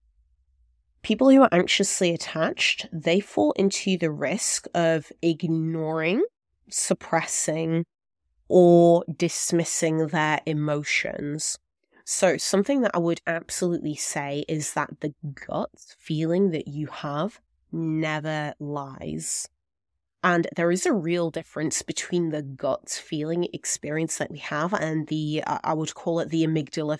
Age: 20-39